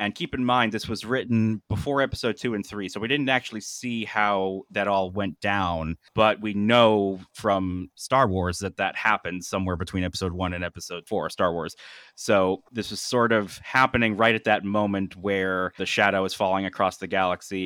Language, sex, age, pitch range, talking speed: English, male, 30-49, 90-110 Hz, 195 wpm